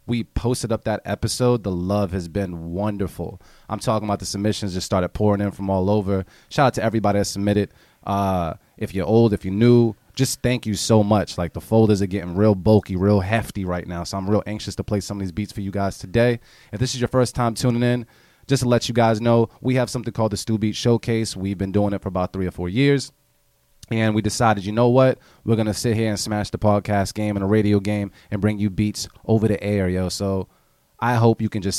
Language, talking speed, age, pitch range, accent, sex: English, 245 wpm, 30-49, 100-120 Hz, American, male